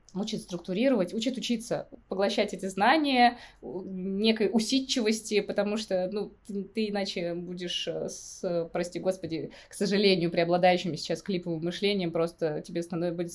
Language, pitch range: Russian, 165-200 Hz